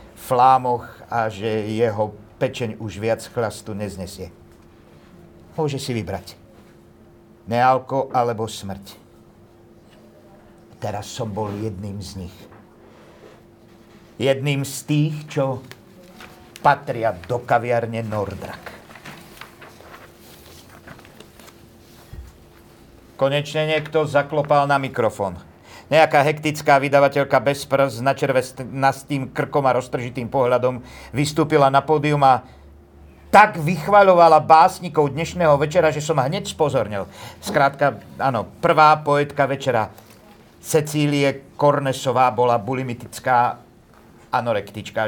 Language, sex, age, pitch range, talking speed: Slovak, male, 50-69, 110-145 Hz, 90 wpm